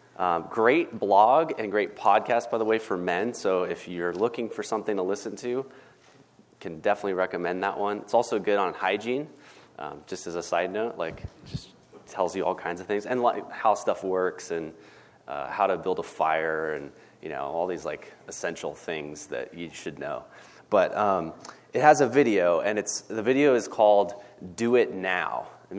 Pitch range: 100-125 Hz